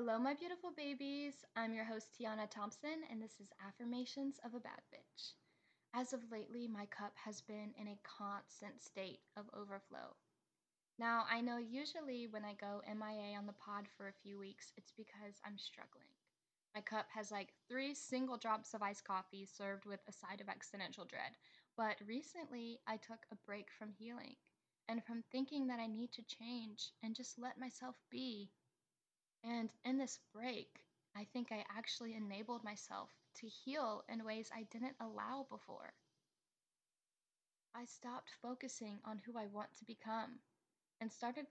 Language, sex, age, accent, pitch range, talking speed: English, female, 10-29, American, 210-245 Hz, 170 wpm